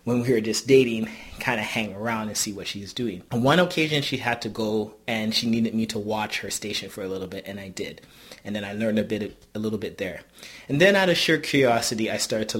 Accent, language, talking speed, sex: American, English, 260 wpm, male